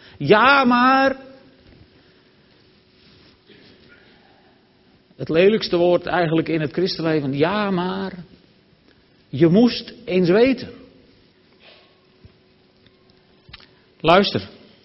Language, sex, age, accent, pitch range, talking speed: Dutch, male, 50-69, Dutch, 130-200 Hz, 65 wpm